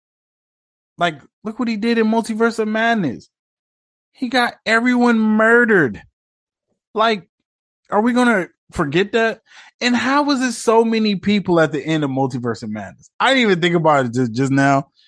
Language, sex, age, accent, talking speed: English, male, 20-39, American, 170 wpm